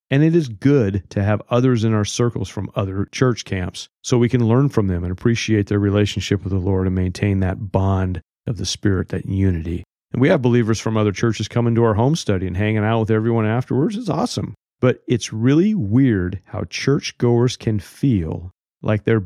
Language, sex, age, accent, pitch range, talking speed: English, male, 40-59, American, 95-120 Hz, 205 wpm